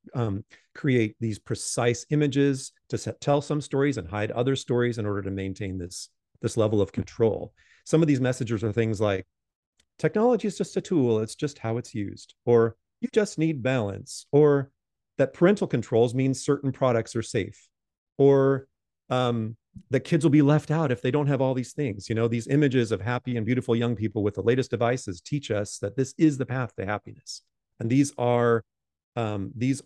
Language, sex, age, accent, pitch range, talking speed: English, male, 40-59, American, 105-130 Hz, 195 wpm